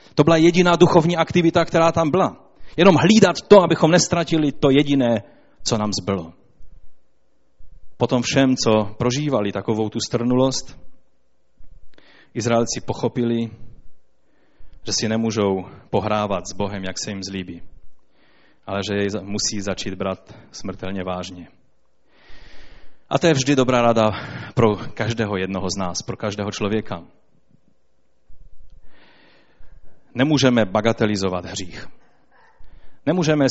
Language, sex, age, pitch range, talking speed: Czech, male, 30-49, 105-155 Hz, 115 wpm